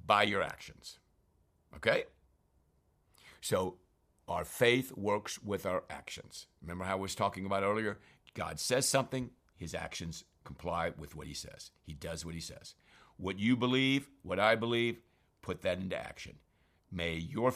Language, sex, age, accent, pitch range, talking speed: English, male, 60-79, American, 95-135 Hz, 155 wpm